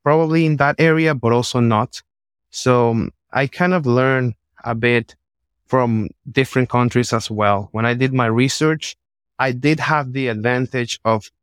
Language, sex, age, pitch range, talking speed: English, male, 20-39, 115-140 Hz, 160 wpm